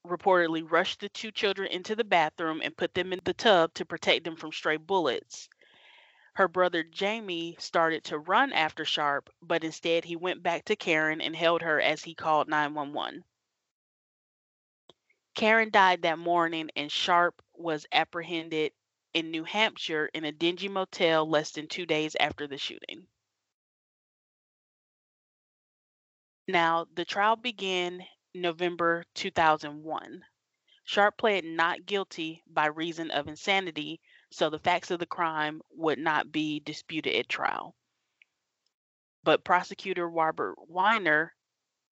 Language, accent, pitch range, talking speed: English, American, 155-190 Hz, 135 wpm